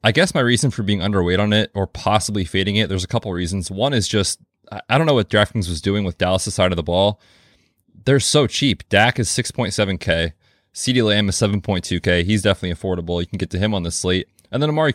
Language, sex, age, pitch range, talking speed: English, male, 20-39, 90-115 Hz, 235 wpm